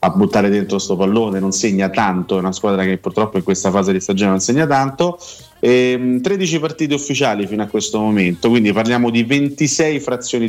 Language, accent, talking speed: Italian, native, 195 wpm